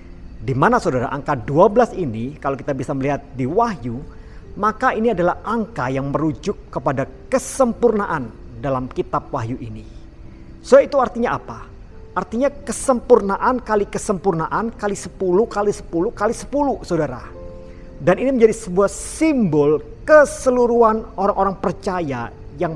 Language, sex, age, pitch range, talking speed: Indonesian, male, 50-69, 125-200 Hz, 125 wpm